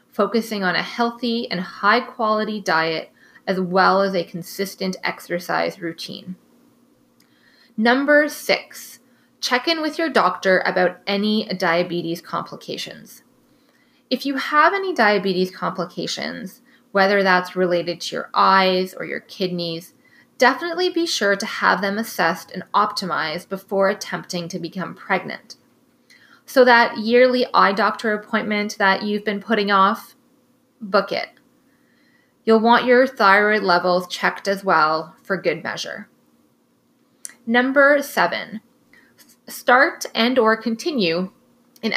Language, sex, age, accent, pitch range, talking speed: English, female, 20-39, American, 185-255 Hz, 125 wpm